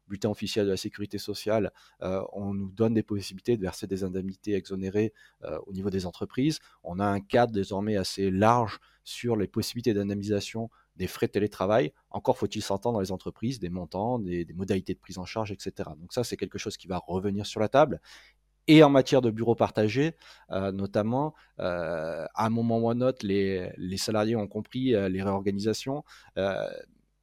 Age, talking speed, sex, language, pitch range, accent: 30-49, 190 wpm, male, French, 100-115 Hz, French